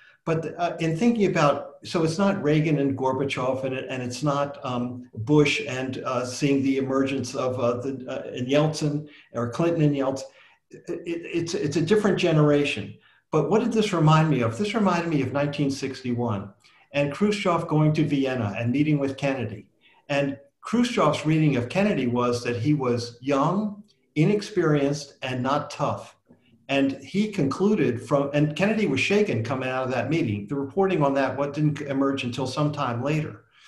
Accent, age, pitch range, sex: American, 50-69, 130-160 Hz, male